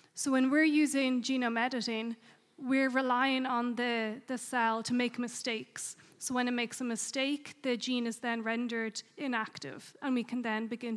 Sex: female